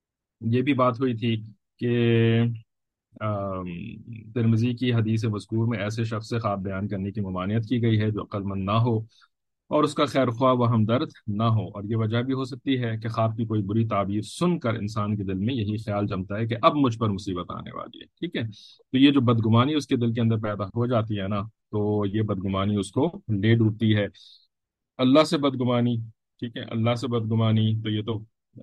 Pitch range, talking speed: 100-115 Hz, 180 wpm